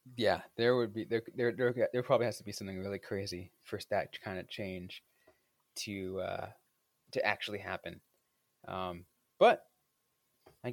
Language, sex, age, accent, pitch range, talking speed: English, male, 20-39, American, 95-125 Hz, 155 wpm